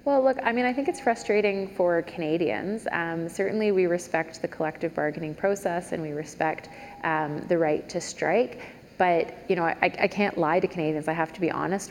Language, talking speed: English, 200 wpm